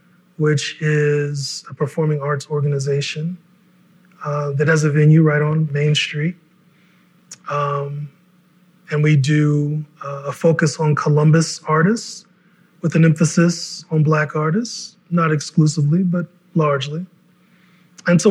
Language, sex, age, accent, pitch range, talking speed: English, male, 20-39, American, 145-180 Hz, 120 wpm